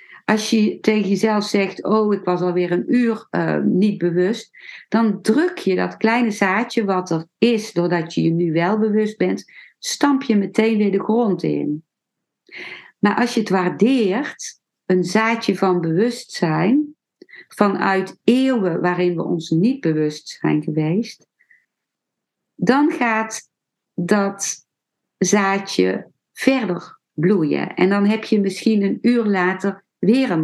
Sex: female